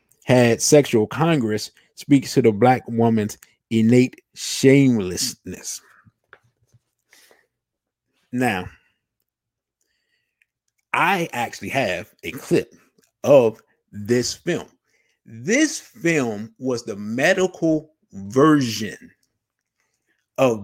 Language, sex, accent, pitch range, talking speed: English, male, American, 115-175 Hz, 75 wpm